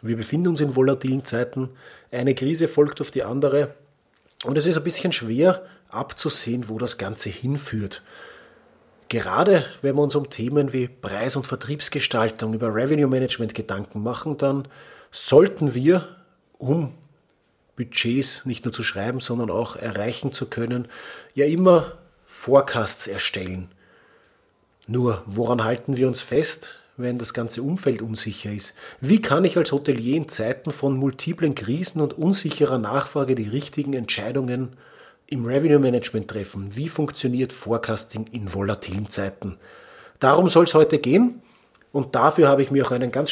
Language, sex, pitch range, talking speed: German, male, 120-150 Hz, 145 wpm